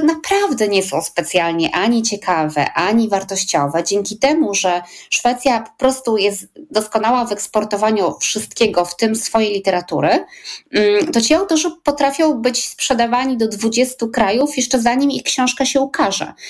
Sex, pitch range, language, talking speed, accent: female, 195-255 Hz, Polish, 140 wpm, native